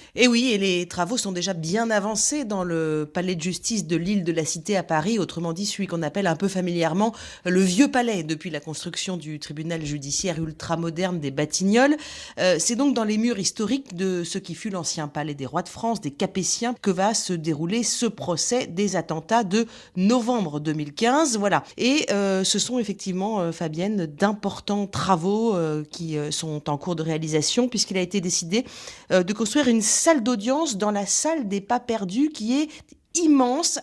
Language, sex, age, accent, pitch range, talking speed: French, female, 30-49, French, 165-225 Hz, 190 wpm